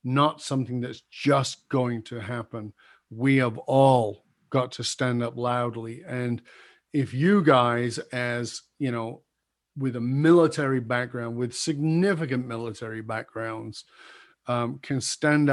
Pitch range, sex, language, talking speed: 125-140 Hz, male, English, 130 wpm